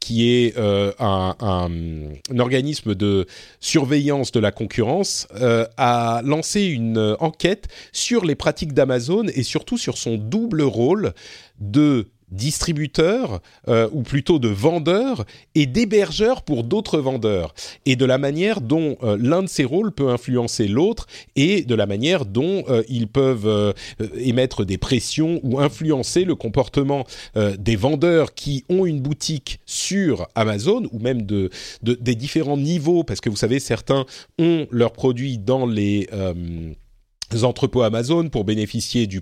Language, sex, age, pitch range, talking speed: French, male, 40-59, 110-155 Hz, 150 wpm